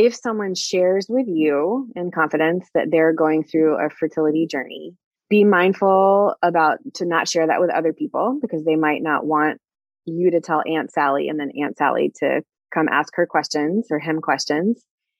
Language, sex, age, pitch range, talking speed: English, female, 20-39, 160-200 Hz, 180 wpm